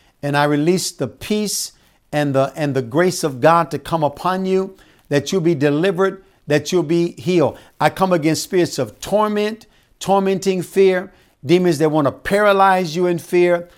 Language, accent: English, American